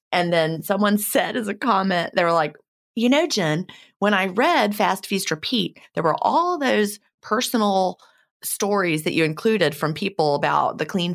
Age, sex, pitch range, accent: 30-49, female, 160-210 Hz, American